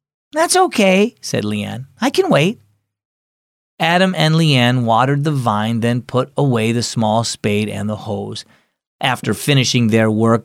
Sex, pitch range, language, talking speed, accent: male, 110-175 Hz, English, 150 wpm, American